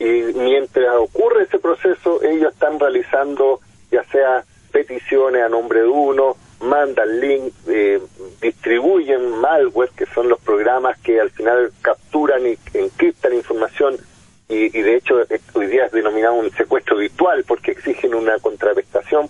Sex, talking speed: male, 145 wpm